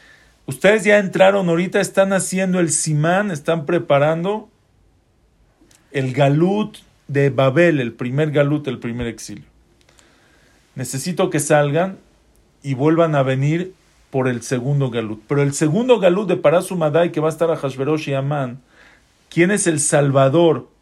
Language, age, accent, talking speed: English, 40-59, Mexican, 140 wpm